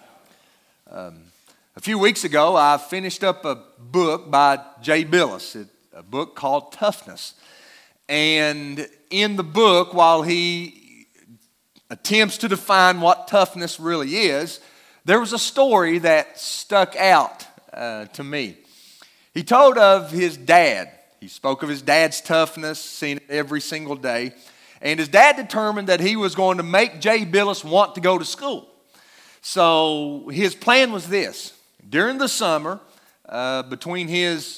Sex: male